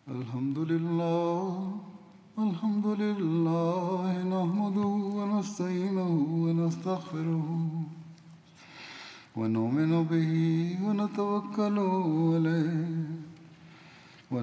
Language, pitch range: Swahili, 160-200 Hz